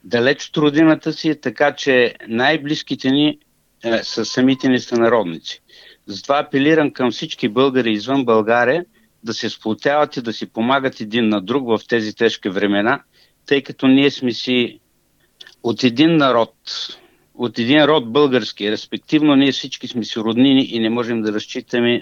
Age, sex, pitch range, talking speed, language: 60-79, male, 115-140 Hz, 160 wpm, Bulgarian